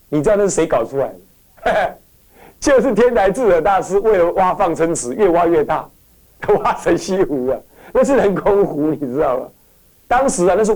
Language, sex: Chinese, male